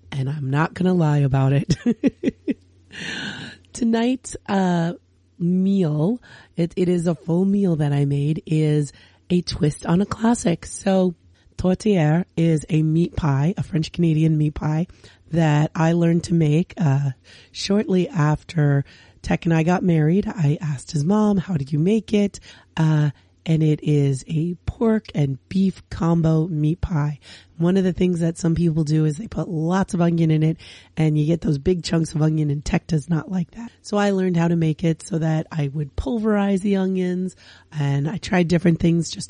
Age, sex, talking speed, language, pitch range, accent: 30-49, female, 185 wpm, English, 150-185 Hz, American